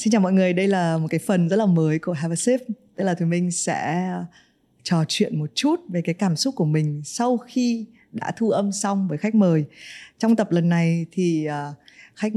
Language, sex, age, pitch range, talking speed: Vietnamese, female, 20-39, 165-215 Hz, 225 wpm